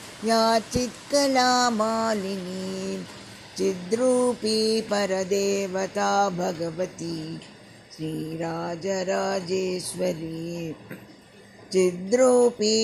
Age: 50-69